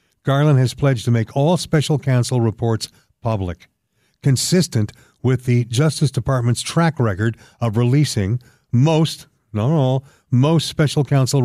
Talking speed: 130 wpm